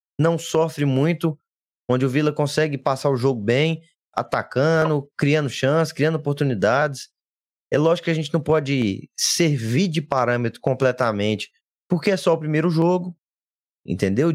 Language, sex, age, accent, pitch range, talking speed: Portuguese, male, 20-39, Brazilian, 130-180 Hz, 140 wpm